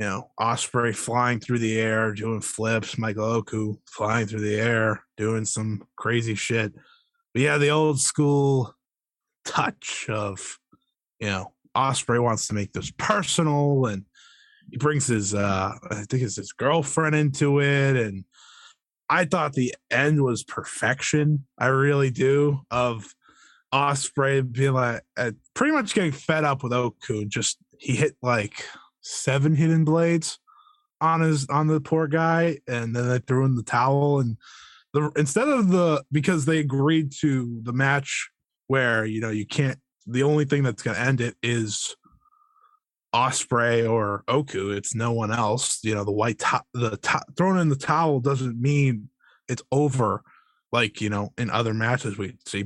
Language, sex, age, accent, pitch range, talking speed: English, male, 20-39, American, 115-150 Hz, 160 wpm